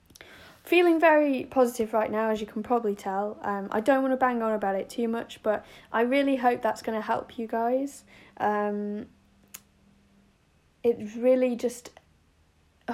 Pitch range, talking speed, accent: 185-235 Hz, 160 wpm, British